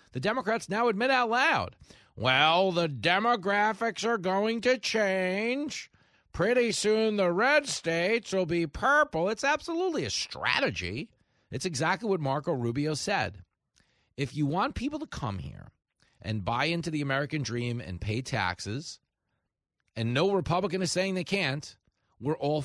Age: 40-59